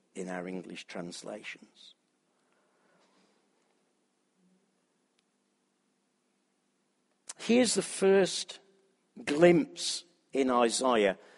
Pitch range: 125-180 Hz